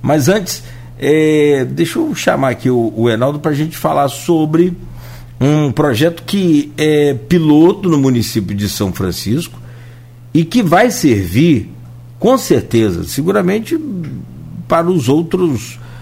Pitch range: 120-175 Hz